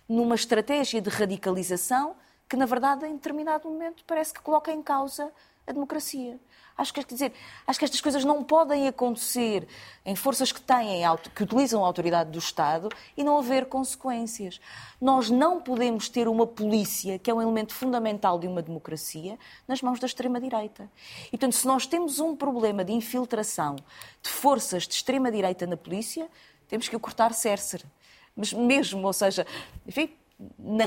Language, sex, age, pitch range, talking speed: Portuguese, female, 20-39, 215-290 Hz, 165 wpm